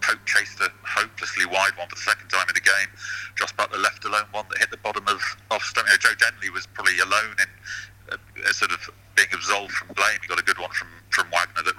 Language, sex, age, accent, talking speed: English, male, 30-49, British, 250 wpm